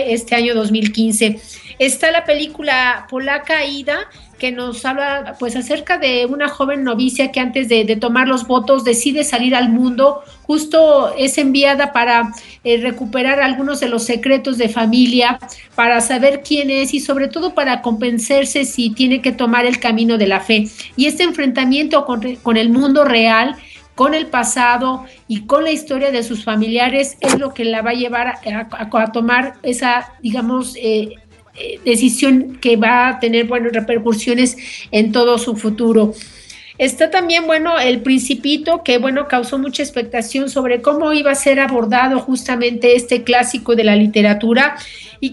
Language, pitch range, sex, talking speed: Spanish, 235-275 Hz, female, 165 wpm